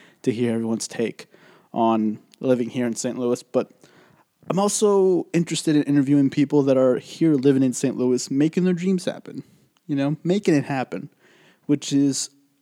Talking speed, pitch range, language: 165 wpm, 130-165 Hz, English